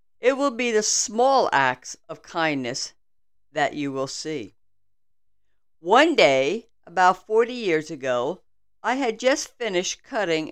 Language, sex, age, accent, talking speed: English, female, 50-69, American, 130 wpm